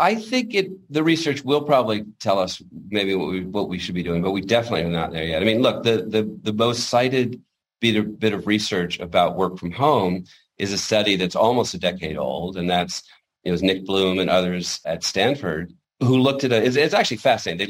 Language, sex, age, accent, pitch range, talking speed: English, male, 40-59, American, 85-105 Hz, 220 wpm